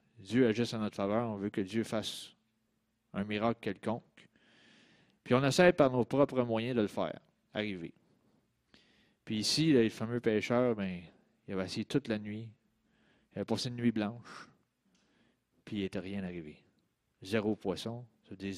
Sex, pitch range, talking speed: male, 100-145 Hz, 160 wpm